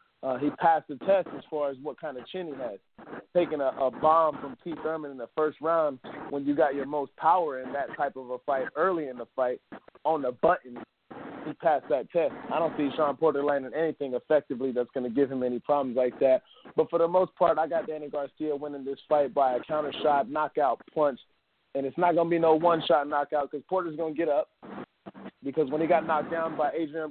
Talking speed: 235 wpm